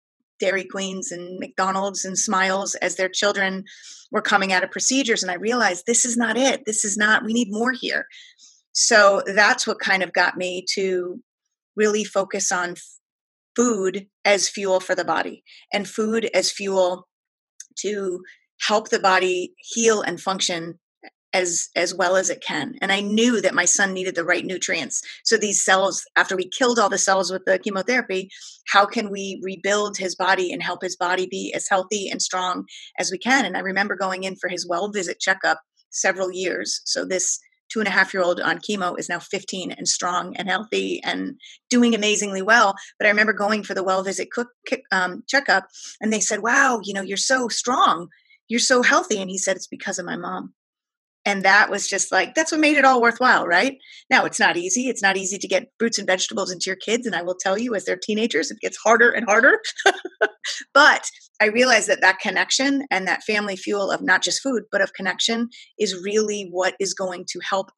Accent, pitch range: American, 185-230 Hz